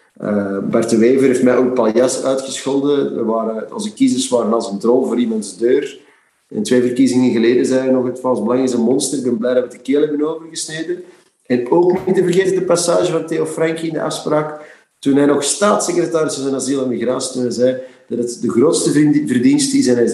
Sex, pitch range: male, 120-160 Hz